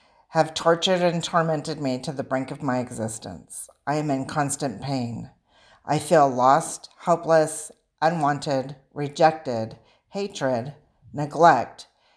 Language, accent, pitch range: English, American, 130-165 Hz